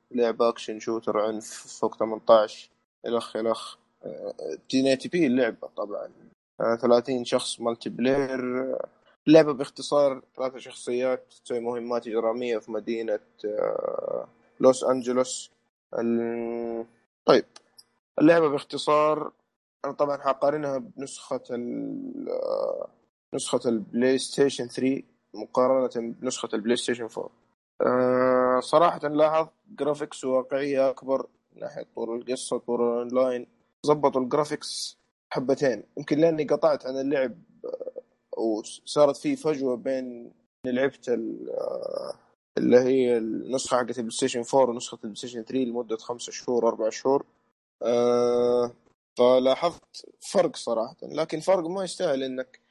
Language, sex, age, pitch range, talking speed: Arabic, male, 20-39, 120-150 Hz, 105 wpm